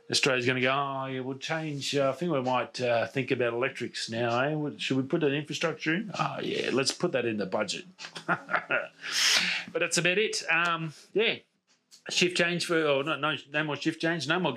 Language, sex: English, male